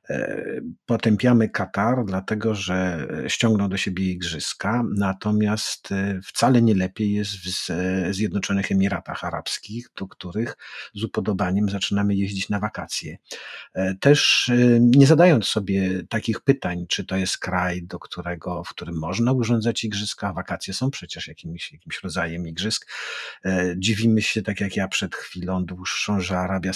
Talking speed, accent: 130 wpm, native